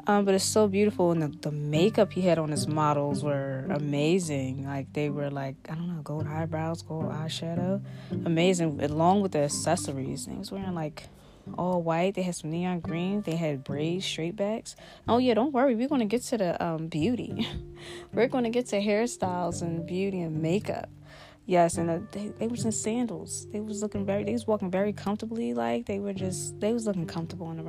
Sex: female